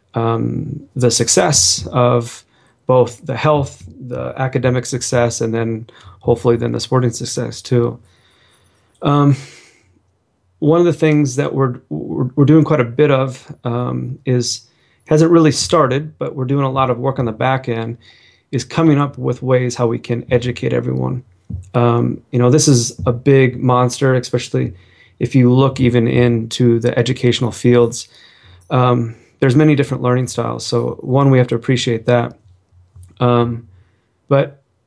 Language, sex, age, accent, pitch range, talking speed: English, male, 30-49, American, 115-135 Hz, 155 wpm